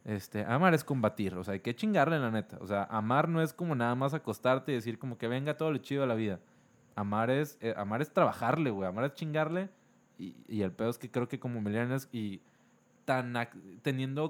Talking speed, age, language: 225 wpm, 20-39, Spanish